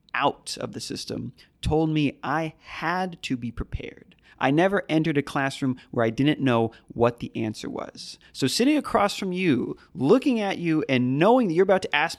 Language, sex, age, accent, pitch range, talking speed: English, male, 30-49, American, 120-175 Hz, 190 wpm